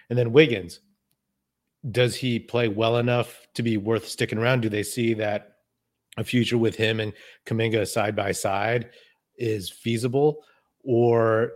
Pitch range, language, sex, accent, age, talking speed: 105-120 Hz, English, male, American, 30-49, 150 wpm